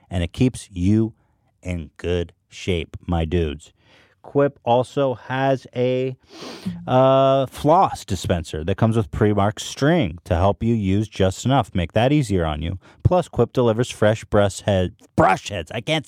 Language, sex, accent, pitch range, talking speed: English, male, American, 95-125 Hz, 155 wpm